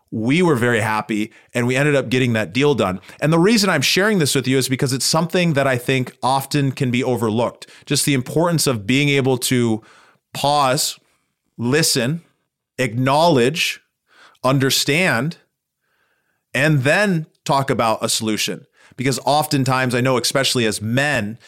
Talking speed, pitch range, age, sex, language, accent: 155 wpm, 120-145 Hz, 30-49, male, English, American